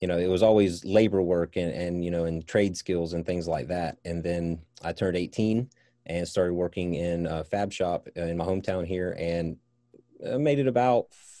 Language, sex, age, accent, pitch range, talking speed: English, male, 30-49, American, 85-100 Hz, 200 wpm